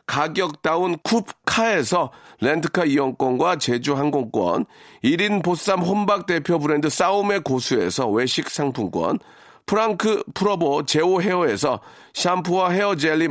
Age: 40-59